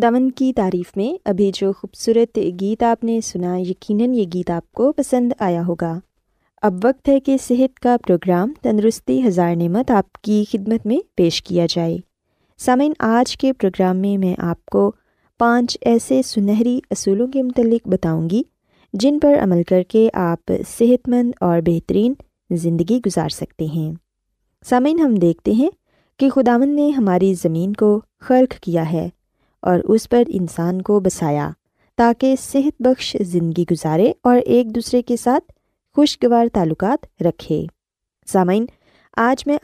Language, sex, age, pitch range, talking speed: Urdu, female, 20-39, 180-255 Hz, 155 wpm